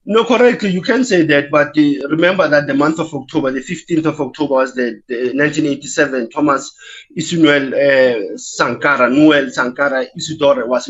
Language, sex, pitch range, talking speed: English, male, 150-225 Hz, 160 wpm